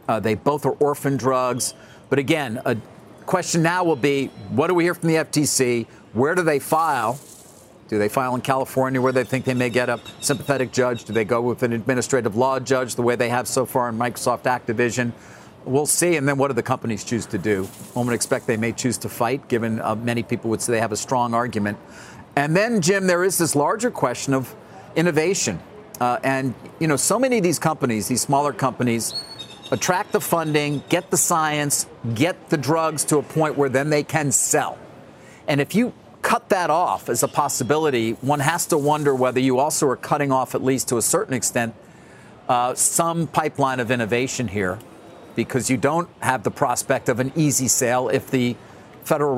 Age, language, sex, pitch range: 50-69, English, male, 120-150 Hz